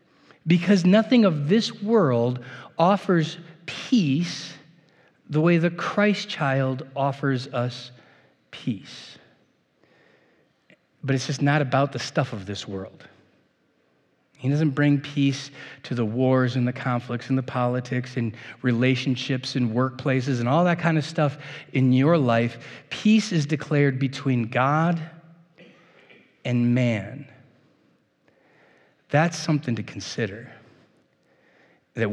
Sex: male